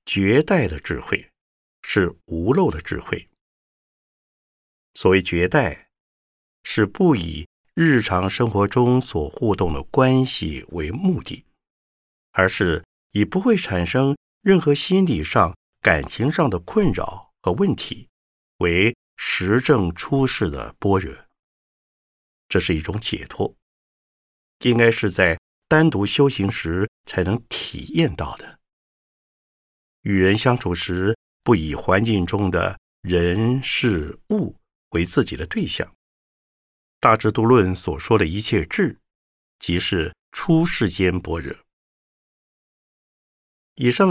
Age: 50-69